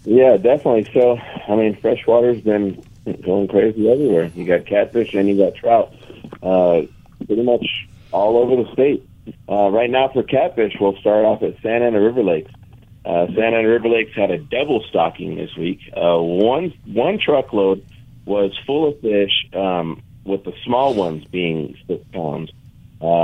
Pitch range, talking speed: 90-115 Hz, 170 wpm